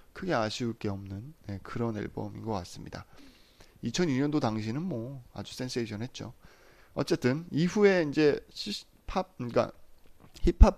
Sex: male